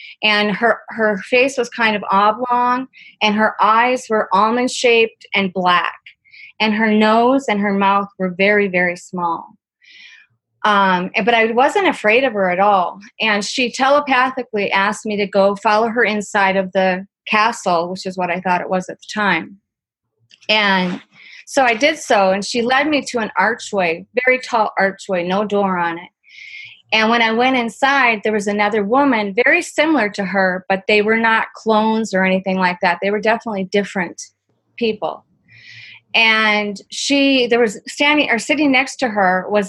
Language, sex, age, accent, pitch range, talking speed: English, female, 30-49, American, 195-245 Hz, 170 wpm